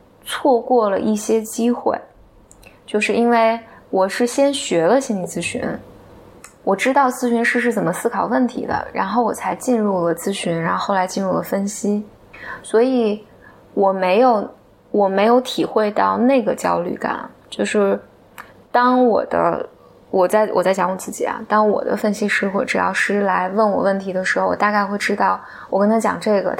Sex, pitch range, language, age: female, 195-240 Hz, Chinese, 20-39